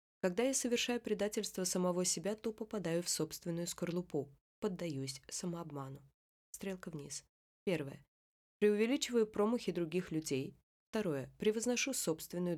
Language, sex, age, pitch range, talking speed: Russian, female, 20-39, 155-195 Hz, 110 wpm